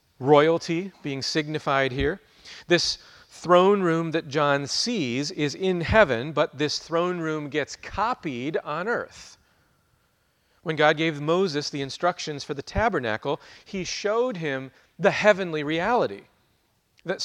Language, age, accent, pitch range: English, 40-59, American, 140-180 Hz